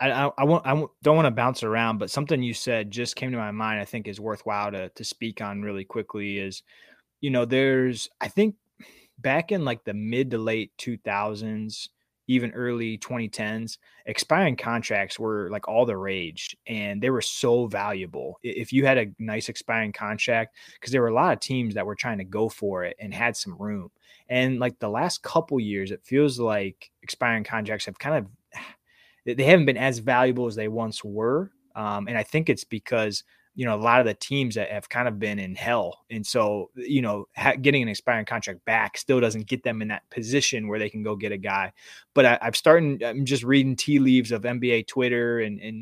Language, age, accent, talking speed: English, 20-39, American, 210 wpm